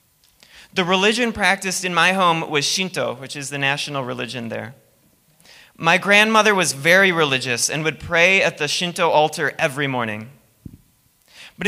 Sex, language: male, English